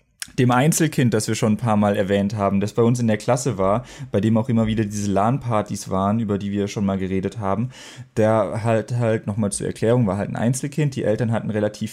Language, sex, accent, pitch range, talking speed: German, male, German, 100-125 Hz, 230 wpm